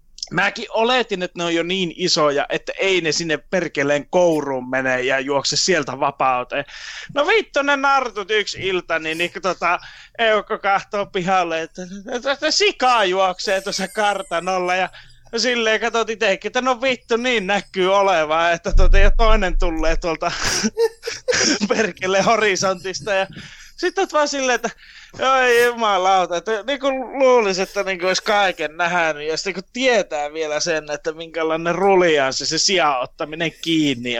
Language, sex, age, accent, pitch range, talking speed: Finnish, male, 20-39, native, 165-230 Hz, 135 wpm